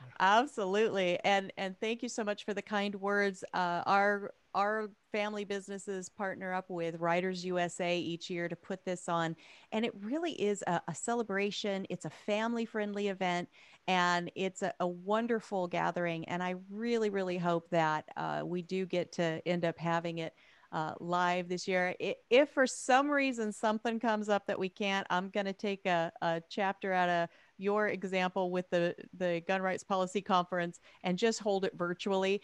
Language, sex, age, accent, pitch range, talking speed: English, female, 40-59, American, 170-205 Hz, 180 wpm